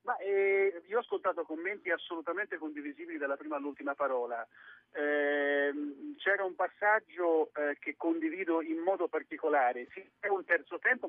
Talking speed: 145 wpm